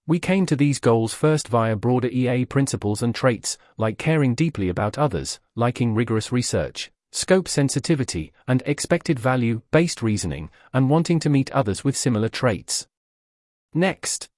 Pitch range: 115-145 Hz